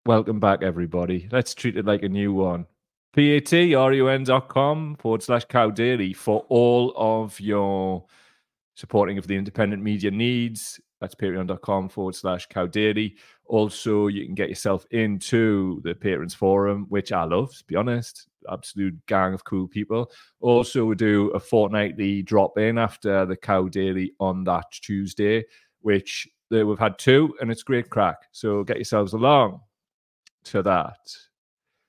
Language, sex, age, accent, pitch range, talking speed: English, male, 30-49, British, 100-125 Hz, 150 wpm